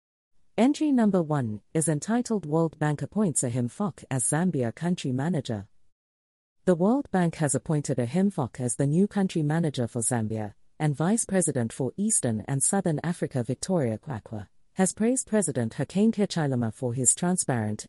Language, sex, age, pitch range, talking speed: English, female, 40-59, 120-185 Hz, 155 wpm